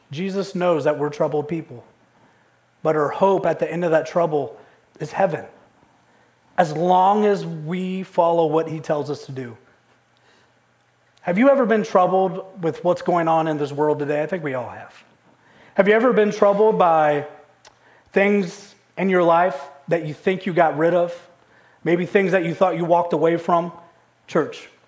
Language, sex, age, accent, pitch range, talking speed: English, male, 30-49, American, 170-245 Hz, 175 wpm